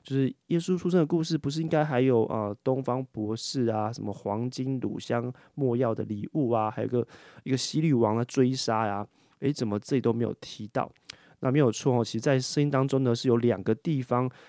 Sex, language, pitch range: male, Chinese, 110-140 Hz